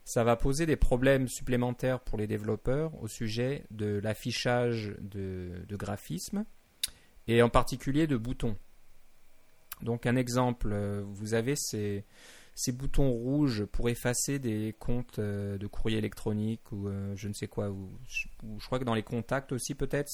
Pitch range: 105-125 Hz